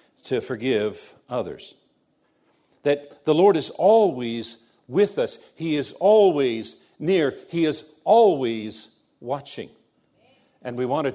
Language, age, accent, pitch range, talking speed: English, 60-79, American, 120-165 Hz, 120 wpm